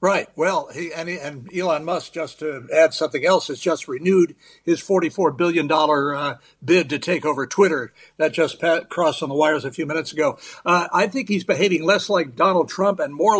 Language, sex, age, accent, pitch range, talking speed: English, male, 60-79, American, 165-210 Hz, 210 wpm